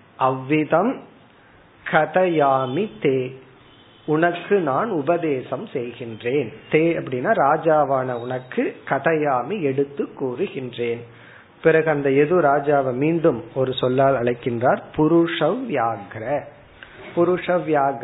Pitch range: 130-165 Hz